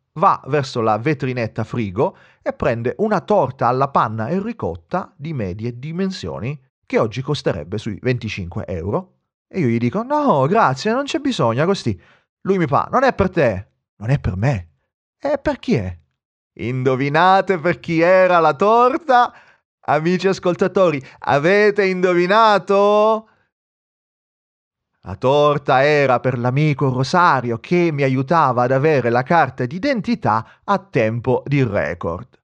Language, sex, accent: Italian, male, native